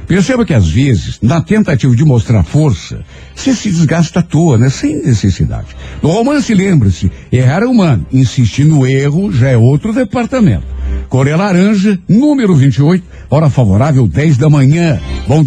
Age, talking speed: 60-79, 155 wpm